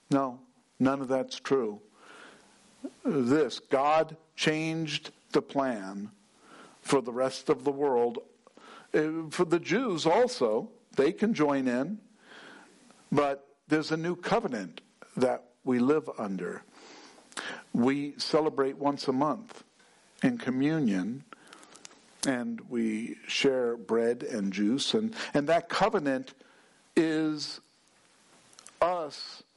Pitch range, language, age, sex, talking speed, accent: 130-175 Hz, English, 60-79, male, 105 wpm, American